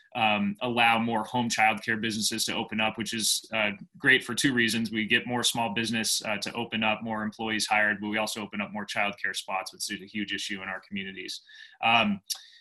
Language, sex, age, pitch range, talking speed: English, male, 20-39, 110-120 Hz, 215 wpm